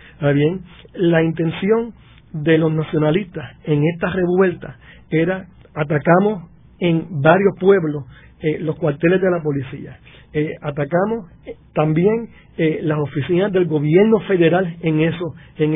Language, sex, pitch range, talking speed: Spanish, male, 150-190 Hz, 125 wpm